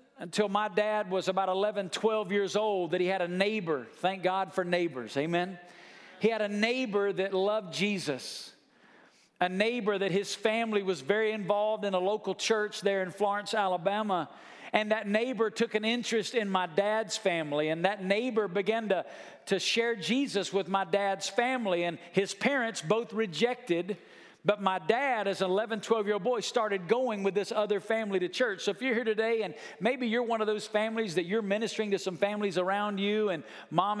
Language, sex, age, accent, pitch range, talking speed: English, male, 50-69, American, 190-225 Hz, 195 wpm